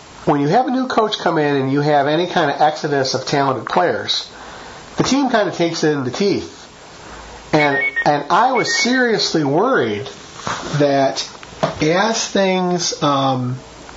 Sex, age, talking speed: male, 40-59, 160 wpm